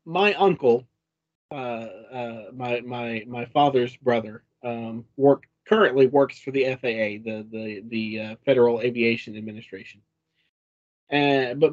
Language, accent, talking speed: English, American, 130 wpm